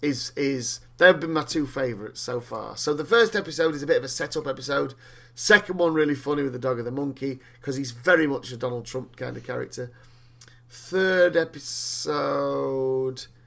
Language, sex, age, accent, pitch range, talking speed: English, male, 30-49, British, 120-150 Hz, 185 wpm